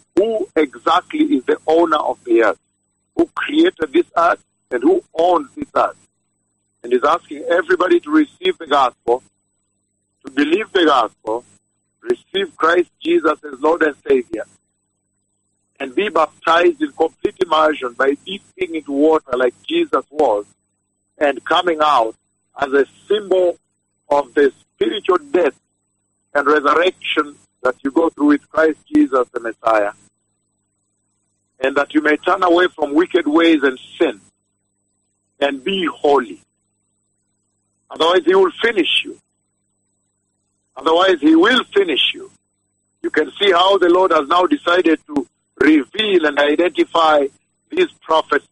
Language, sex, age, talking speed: English, male, 50-69, 135 wpm